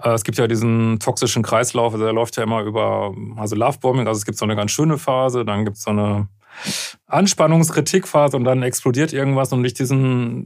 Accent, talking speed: German, 195 wpm